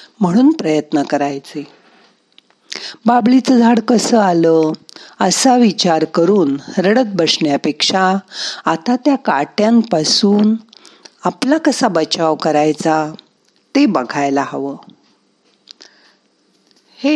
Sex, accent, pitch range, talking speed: female, native, 160-230 Hz, 80 wpm